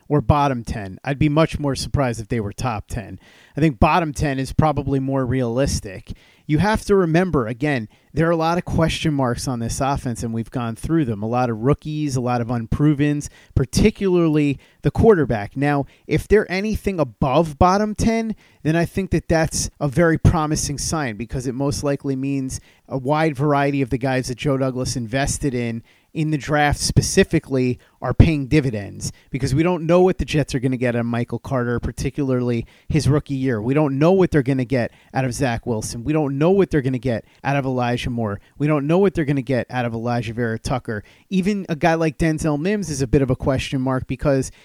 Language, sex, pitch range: English, male, 125-160 Hz